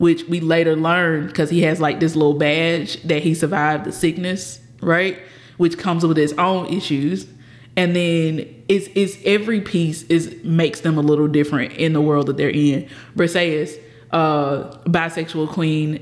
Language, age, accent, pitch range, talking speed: English, 20-39, American, 150-180 Hz, 170 wpm